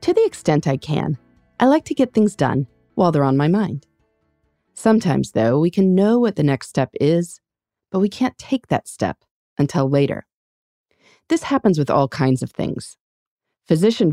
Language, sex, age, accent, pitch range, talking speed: English, female, 30-49, American, 135-225 Hz, 180 wpm